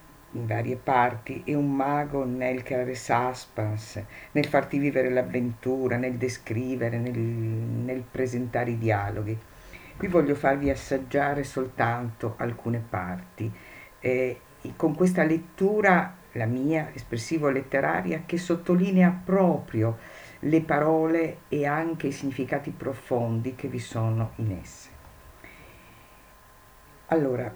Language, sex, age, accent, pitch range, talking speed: Italian, female, 50-69, native, 115-150 Hz, 110 wpm